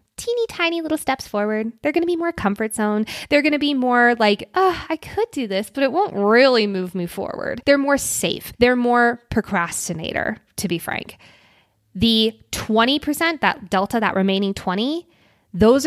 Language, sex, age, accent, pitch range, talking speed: English, female, 20-39, American, 190-255 Hz, 175 wpm